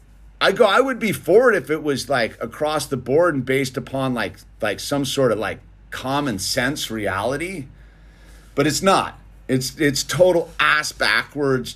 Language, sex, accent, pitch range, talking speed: English, male, American, 115-170 Hz, 175 wpm